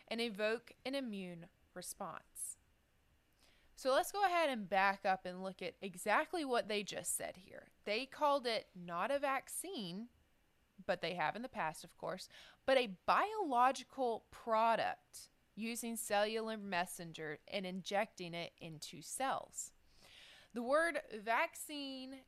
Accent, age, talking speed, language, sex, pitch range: American, 20-39, 135 wpm, English, female, 190-255 Hz